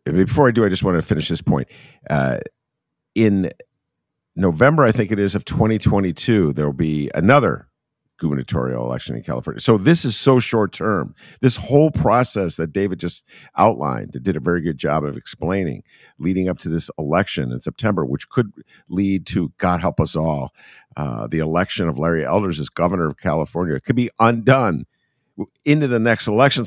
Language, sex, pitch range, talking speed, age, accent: English, male, 75-110 Hz, 180 wpm, 50-69, American